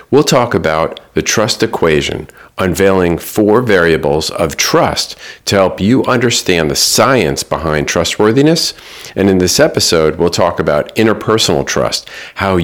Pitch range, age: 80-105 Hz, 50-69